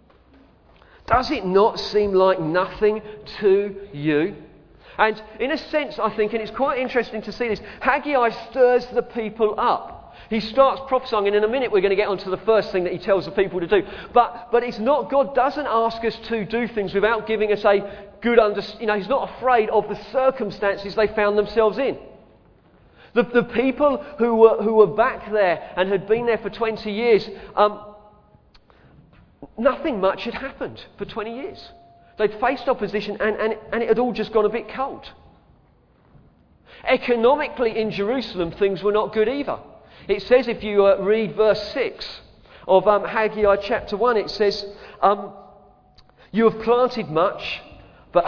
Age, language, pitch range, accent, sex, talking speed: 40-59, English, 195-235 Hz, British, male, 180 wpm